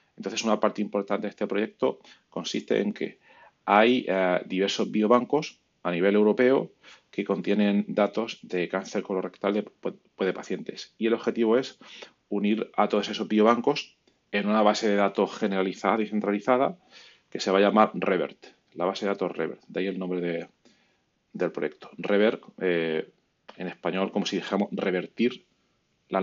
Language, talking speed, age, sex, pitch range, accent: Spanish, 160 wpm, 30-49, male, 95-110 Hz, Spanish